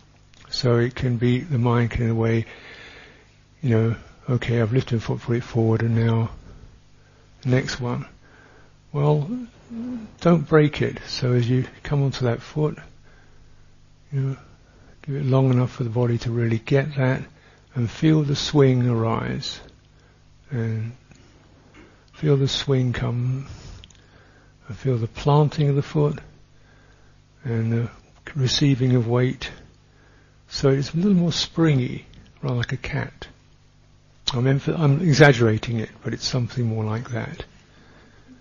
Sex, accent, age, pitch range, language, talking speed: male, British, 60-79, 115-135 Hz, English, 140 wpm